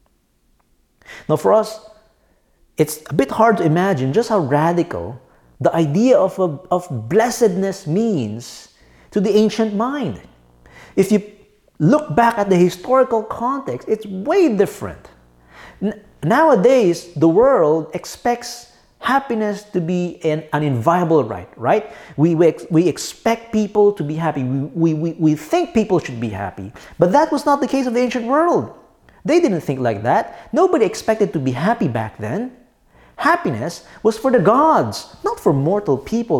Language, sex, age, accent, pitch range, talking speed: English, male, 50-69, Filipino, 155-225 Hz, 150 wpm